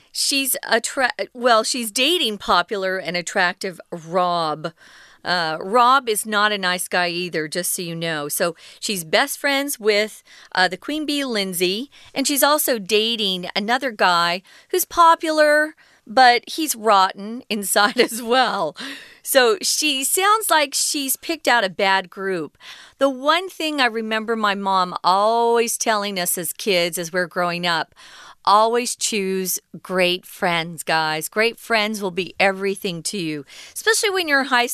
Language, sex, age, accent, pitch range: Chinese, female, 40-59, American, 185-260 Hz